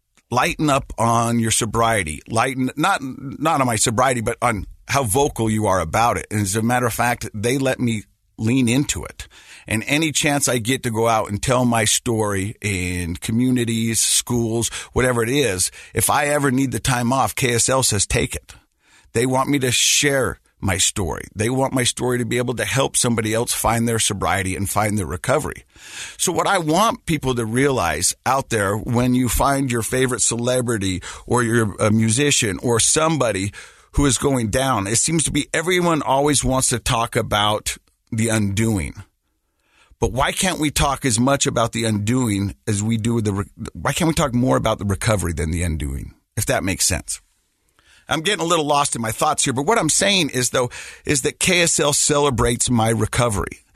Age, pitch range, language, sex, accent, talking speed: 50-69, 105-135 Hz, English, male, American, 190 wpm